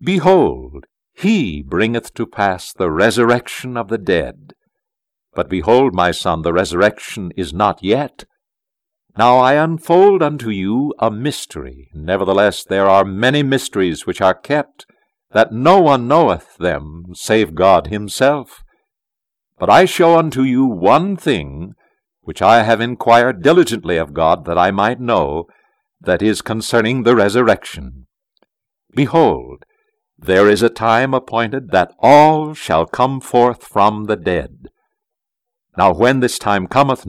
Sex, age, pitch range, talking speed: male, 60-79, 100-145 Hz, 135 wpm